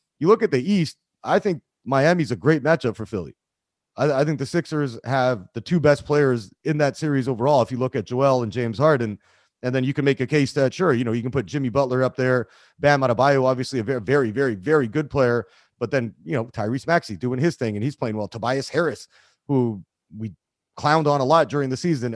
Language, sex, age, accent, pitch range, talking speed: English, male, 30-49, American, 125-155 Hz, 235 wpm